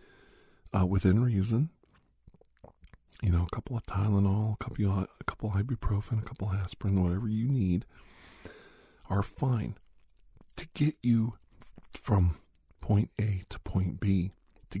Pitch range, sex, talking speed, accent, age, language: 90-115 Hz, male, 140 wpm, American, 50-69, English